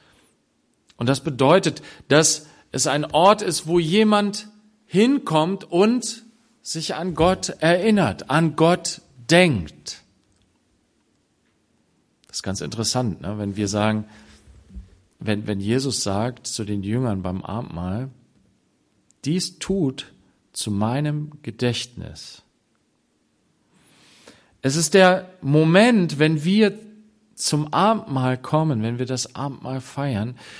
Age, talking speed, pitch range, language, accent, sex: 40-59, 110 wpm, 120-185 Hz, German, German, male